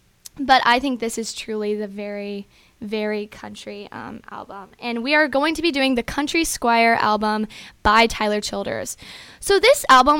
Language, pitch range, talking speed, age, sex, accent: English, 215-265 Hz, 170 wpm, 10-29, female, American